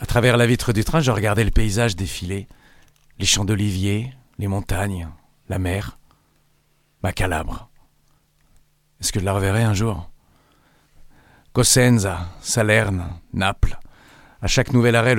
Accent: French